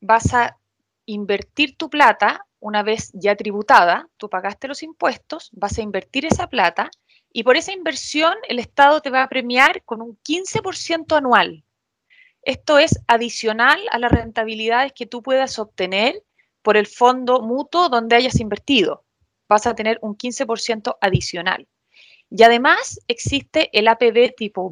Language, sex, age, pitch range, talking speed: Spanish, female, 20-39, 220-305 Hz, 150 wpm